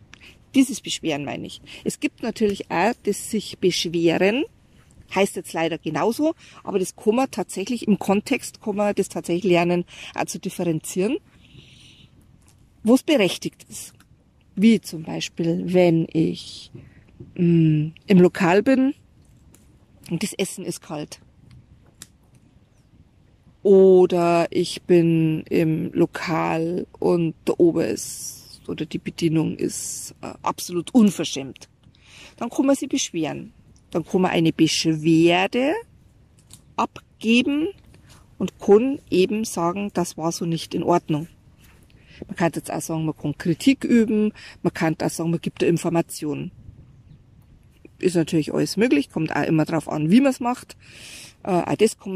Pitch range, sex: 160-205 Hz, female